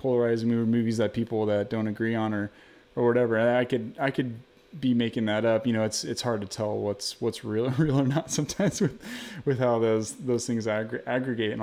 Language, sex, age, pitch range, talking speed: English, male, 20-39, 110-130 Hz, 215 wpm